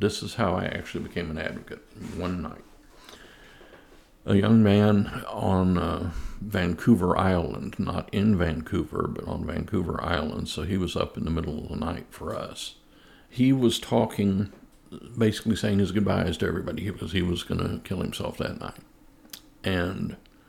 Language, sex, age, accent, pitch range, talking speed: English, male, 60-79, American, 85-105 Hz, 160 wpm